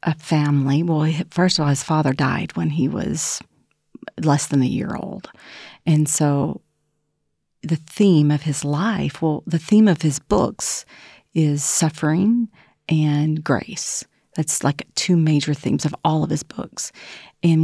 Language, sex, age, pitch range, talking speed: Slovak, female, 40-59, 150-175 Hz, 155 wpm